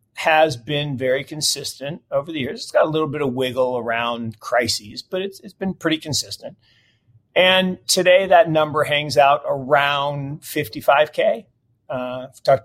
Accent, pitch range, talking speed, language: American, 120-145 Hz, 160 wpm, English